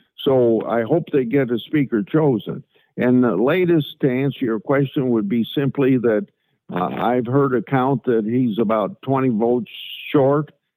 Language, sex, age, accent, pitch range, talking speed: English, male, 60-79, American, 115-135 Hz, 165 wpm